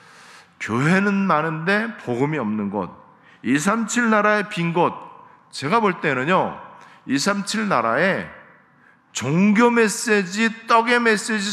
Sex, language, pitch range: male, Korean, 160-200 Hz